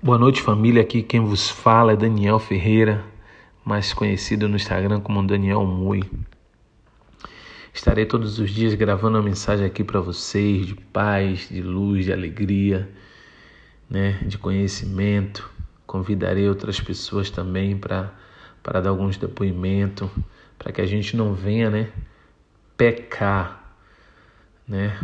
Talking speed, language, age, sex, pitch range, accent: 130 wpm, Portuguese, 40-59, male, 95-110 Hz, Brazilian